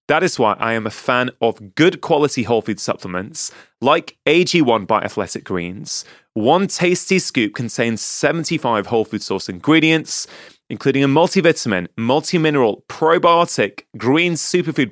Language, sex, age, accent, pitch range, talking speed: English, male, 30-49, British, 110-160 Hz, 135 wpm